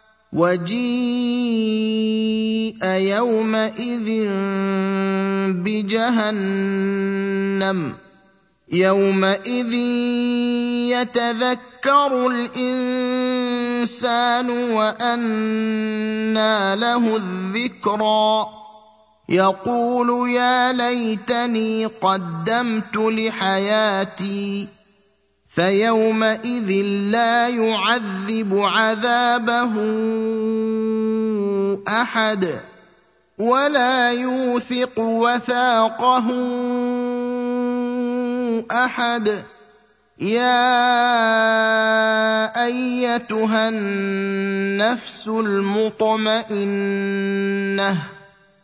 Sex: male